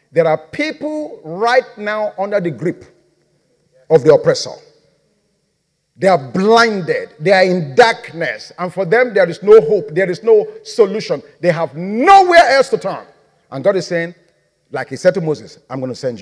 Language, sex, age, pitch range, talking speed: Croatian, male, 50-69, 165-255 Hz, 180 wpm